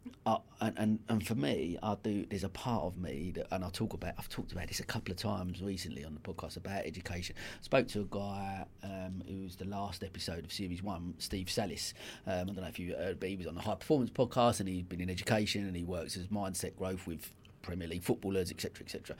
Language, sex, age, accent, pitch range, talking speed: English, male, 30-49, British, 90-105 Hz, 250 wpm